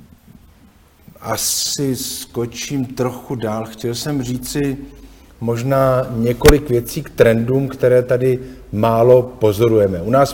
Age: 50-69